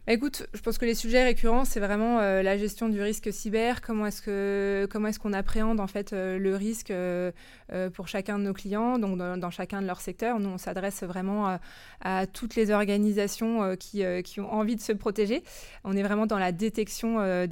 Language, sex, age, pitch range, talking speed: French, female, 20-39, 185-220 Hz, 225 wpm